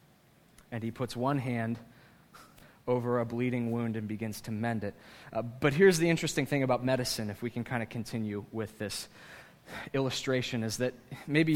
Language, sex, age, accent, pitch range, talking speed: English, male, 20-39, American, 115-145 Hz, 175 wpm